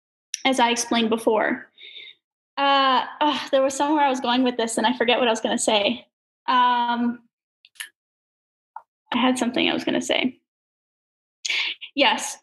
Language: English